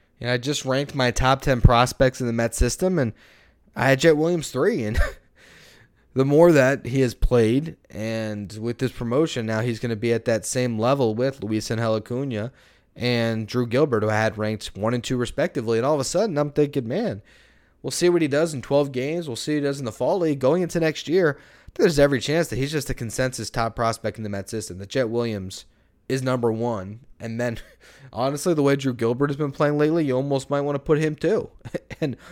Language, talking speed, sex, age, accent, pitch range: English, 225 wpm, male, 20-39, American, 110-145 Hz